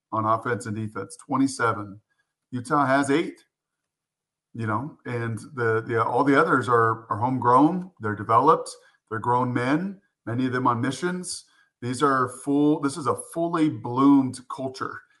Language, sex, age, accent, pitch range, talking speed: English, male, 40-59, American, 115-140 Hz, 150 wpm